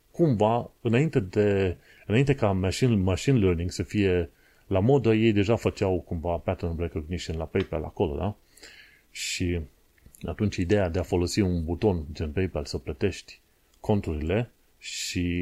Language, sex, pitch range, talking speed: Romanian, male, 85-105 Hz, 140 wpm